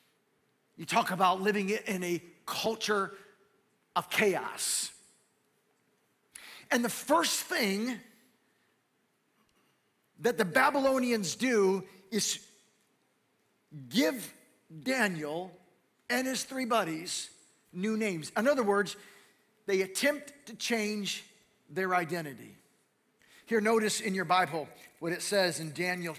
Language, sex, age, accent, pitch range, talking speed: English, male, 40-59, American, 190-260 Hz, 105 wpm